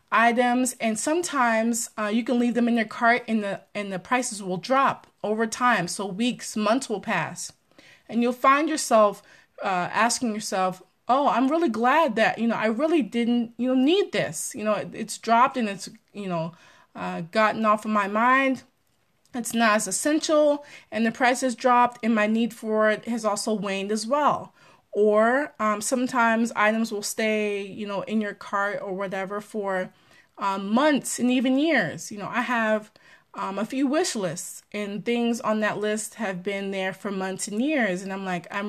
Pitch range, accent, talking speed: 200-240 Hz, American, 190 wpm